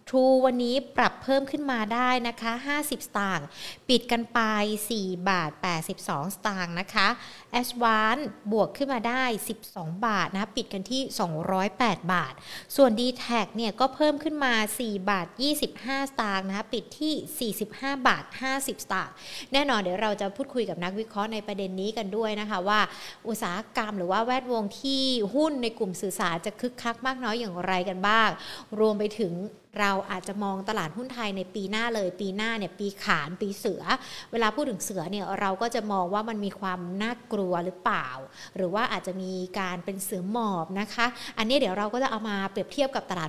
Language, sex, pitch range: Thai, female, 195-250 Hz